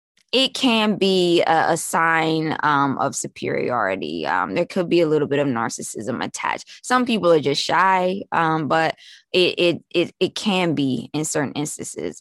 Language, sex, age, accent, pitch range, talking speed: English, female, 20-39, American, 155-200 Hz, 170 wpm